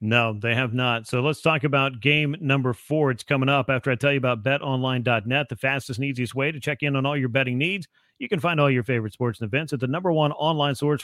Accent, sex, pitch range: American, male, 130-155 Hz